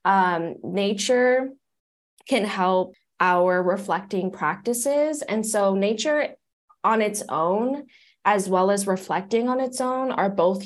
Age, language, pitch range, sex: 10-29, English, 175-235 Hz, female